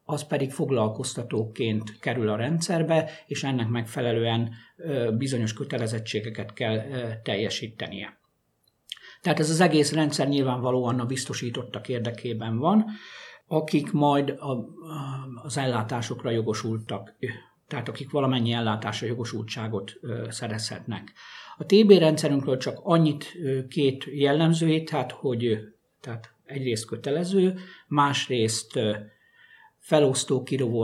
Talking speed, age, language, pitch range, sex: 95 wpm, 60-79, Hungarian, 115-145 Hz, male